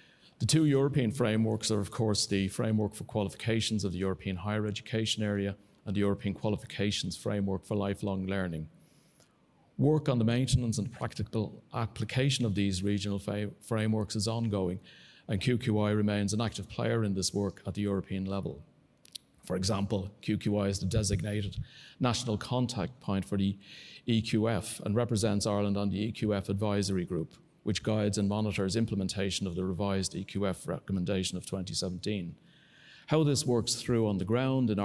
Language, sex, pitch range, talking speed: English, male, 100-115 Hz, 155 wpm